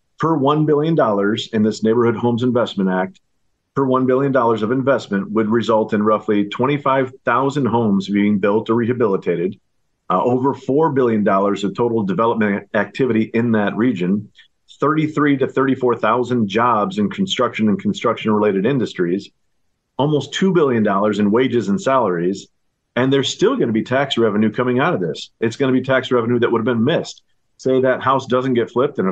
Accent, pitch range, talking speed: American, 110-135 Hz, 160 wpm